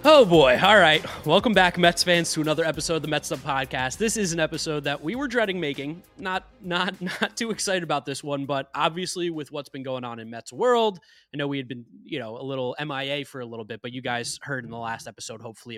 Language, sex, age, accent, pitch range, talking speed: English, male, 20-39, American, 140-190 Hz, 250 wpm